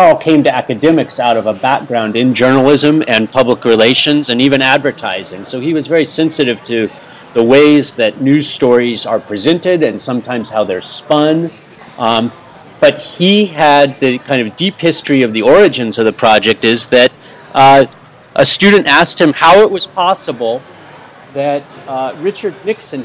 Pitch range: 125-155 Hz